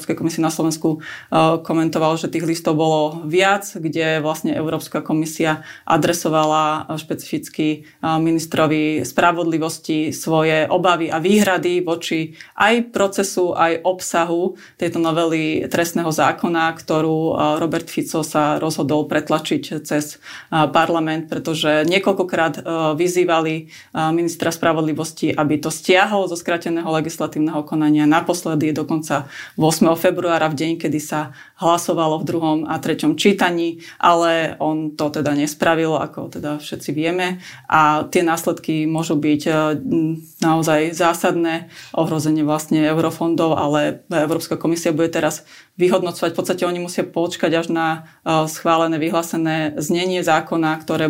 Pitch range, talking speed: 155-170 Hz, 120 wpm